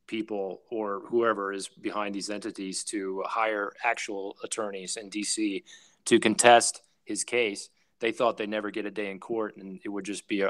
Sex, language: male, English